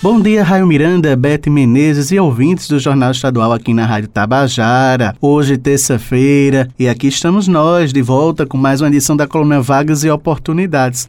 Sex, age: male, 20-39